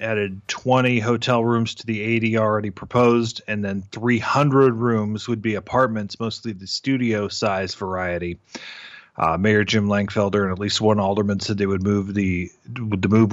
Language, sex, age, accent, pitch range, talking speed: English, male, 30-49, American, 110-135 Hz, 165 wpm